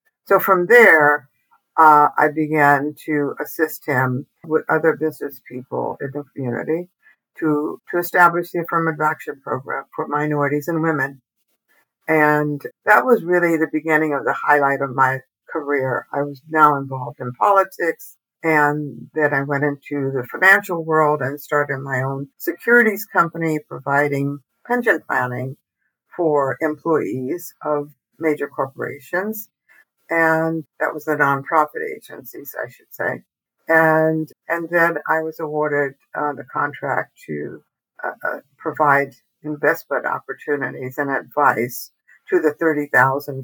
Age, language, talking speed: 60-79, English, 130 wpm